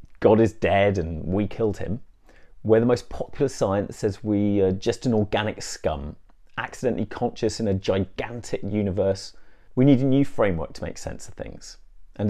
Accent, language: British, English